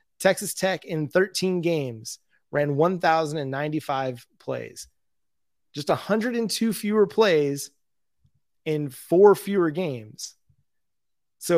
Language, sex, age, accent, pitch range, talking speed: English, male, 30-49, American, 145-185 Hz, 90 wpm